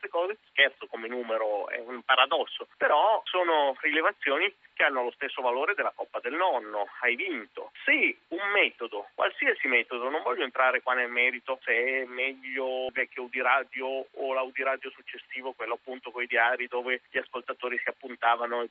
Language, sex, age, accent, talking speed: Italian, male, 30-49, native, 165 wpm